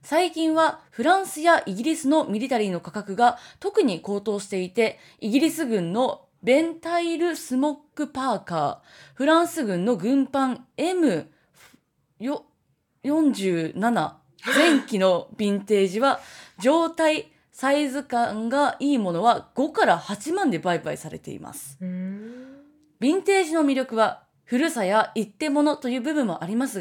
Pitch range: 200-290 Hz